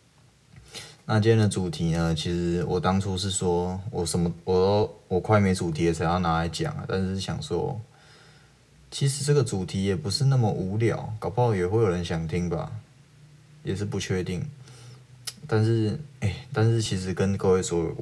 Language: Chinese